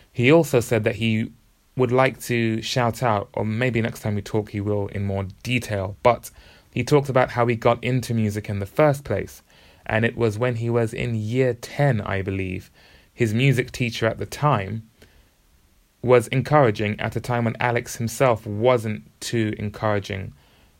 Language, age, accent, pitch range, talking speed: English, 20-39, British, 105-120 Hz, 180 wpm